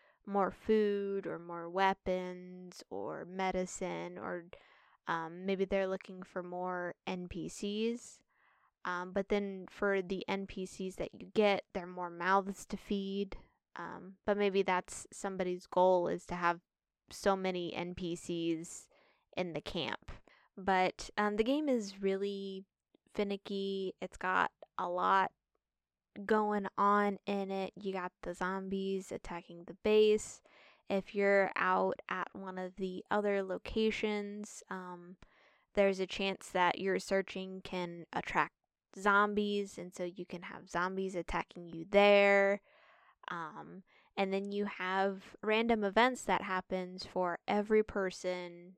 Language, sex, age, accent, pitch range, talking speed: English, female, 20-39, American, 180-200 Hz, 130 wpm